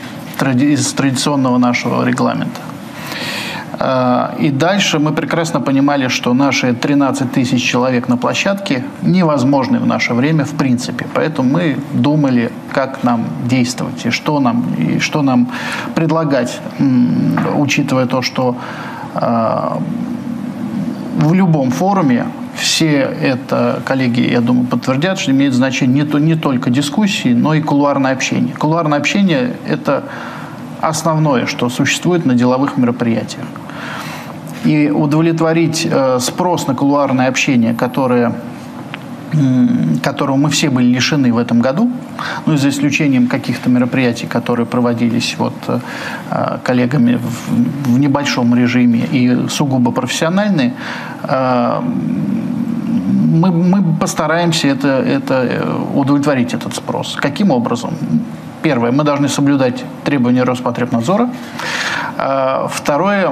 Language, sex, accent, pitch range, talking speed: Russian, male, native, 125-170 Hz, 110 wpm